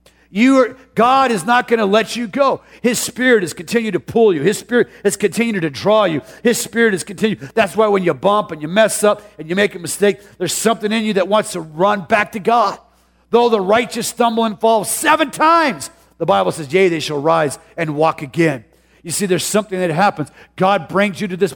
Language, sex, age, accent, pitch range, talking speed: English, male, 50-69, American, 160-225 Hz, 230 wpm